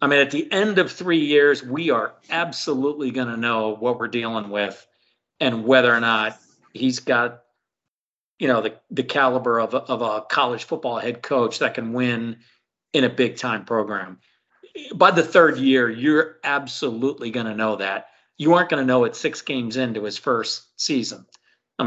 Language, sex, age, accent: English, male, 50-69, American